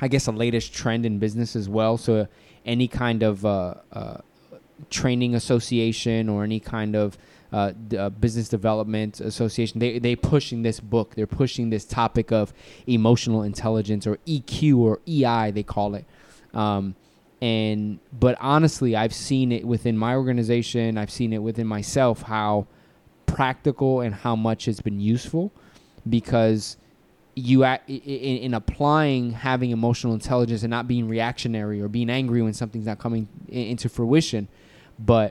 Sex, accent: male, American